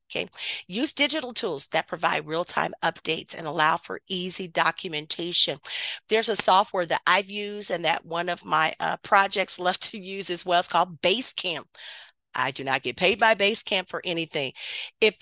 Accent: American